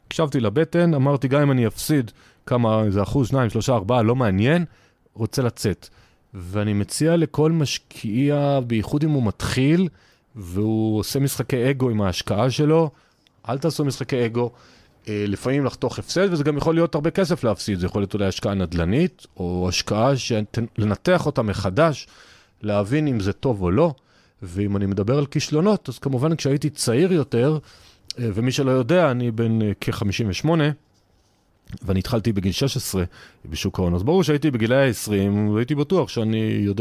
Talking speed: 155 wpm